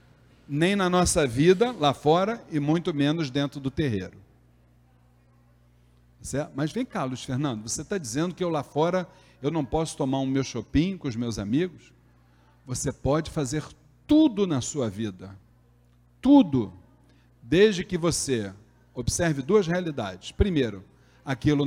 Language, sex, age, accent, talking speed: Portuguese, male, 40-59, Brazilian, 140 wpm